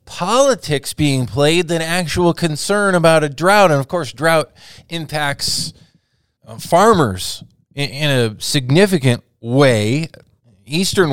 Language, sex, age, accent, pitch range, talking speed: English, male, 20-39, American, 120-155 Hz, 110 wpm